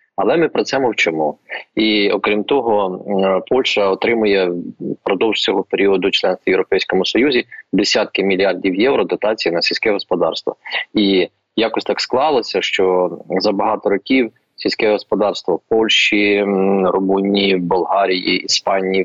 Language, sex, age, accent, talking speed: Ukrainian, male, 20-39, native, 125 wpm